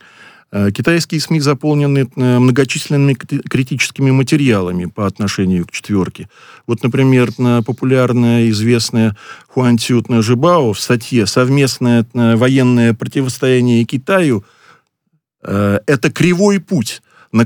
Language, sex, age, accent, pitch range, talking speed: Russian, male, 40-59, native, 120-165 Hz, 95 wpm